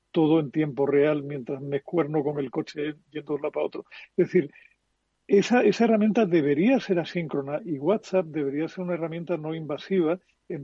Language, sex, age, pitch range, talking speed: Spanish, male, 50-69, 150-185 Hz, 180 wpm